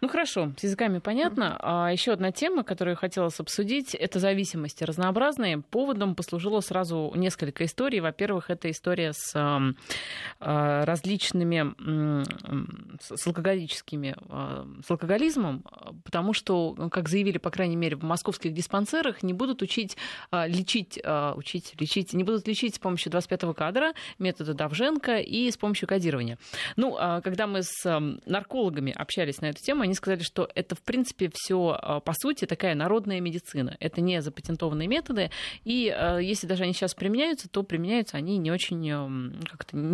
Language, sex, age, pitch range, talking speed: Russian, female, 20-39, 160-210 Hz, 145 wpm